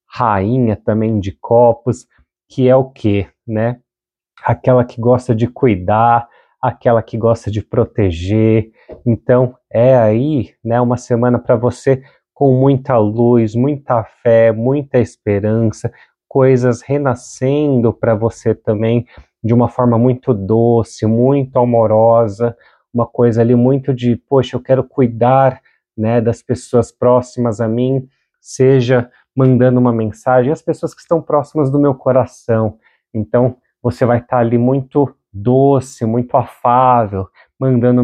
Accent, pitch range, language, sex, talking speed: Brazilian, 110-125 Hz, Portuguese, male, 130 wpm